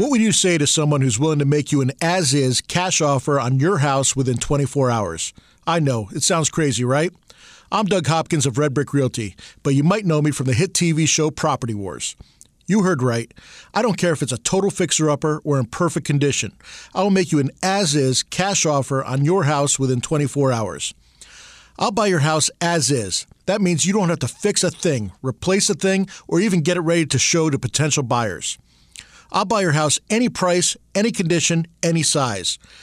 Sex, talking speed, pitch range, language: male, 205 wpm, 140-185 Hz, English